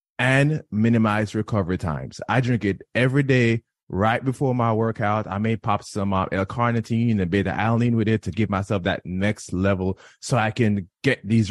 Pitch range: 100-125 Hz